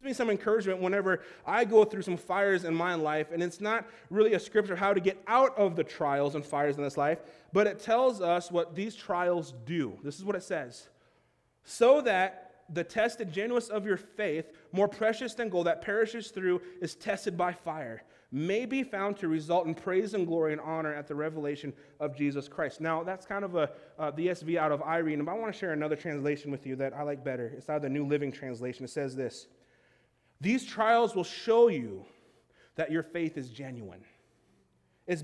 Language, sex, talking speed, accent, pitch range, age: English, male, 210 wpm, American, 150-215 Hz, 30-49